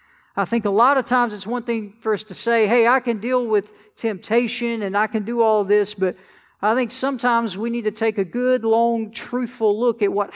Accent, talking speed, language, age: American, 235 wpm, English, 50-69